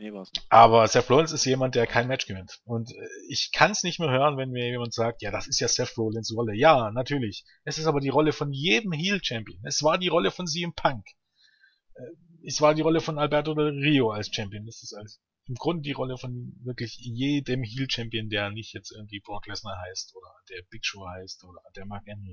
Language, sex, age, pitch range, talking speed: German, male, 30-49, 115-150 Hz, 220 wpm